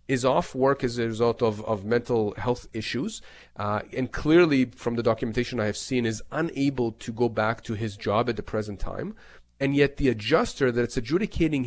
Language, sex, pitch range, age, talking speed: English, male, 115-155 Hz, 30-49, 195 wpm